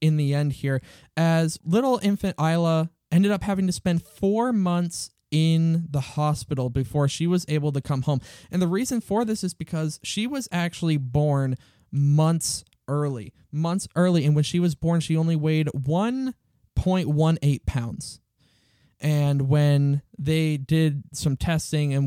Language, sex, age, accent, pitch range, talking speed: English, male, 20-39, American, 140-175 Hz, 155 wpm